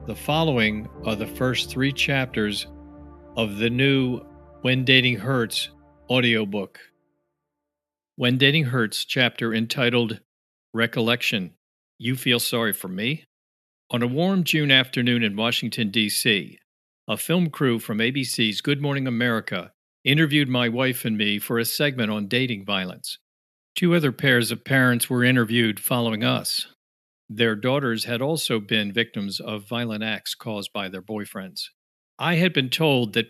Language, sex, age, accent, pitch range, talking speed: English, male, 50-69, American, 110-130 Hz, 140 wpm